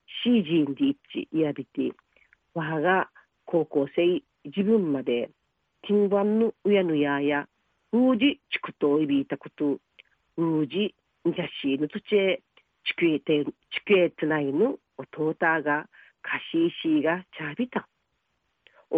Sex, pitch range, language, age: female, 150-220 Hz, Japanese, 40-59